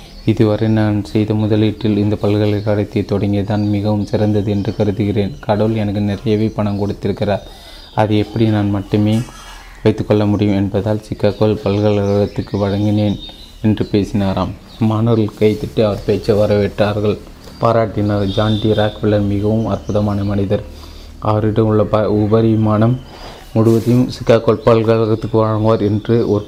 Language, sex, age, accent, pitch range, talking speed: Tamil, male, 30-49, native, 100-110 Hz, 115 wpm